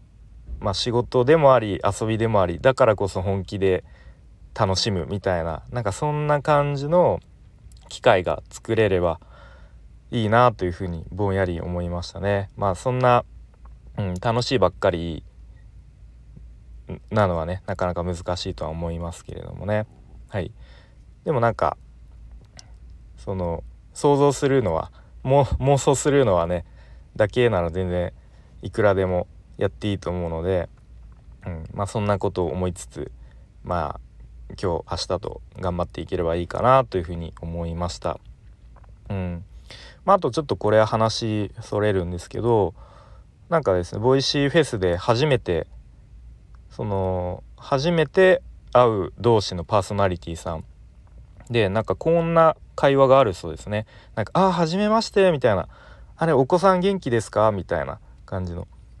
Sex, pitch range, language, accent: male, 90-125 Hz, Japanese, native